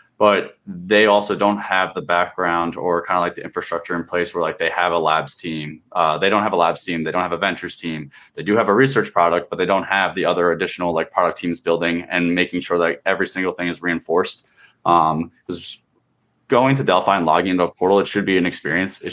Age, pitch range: 20-39, 85-95 Hz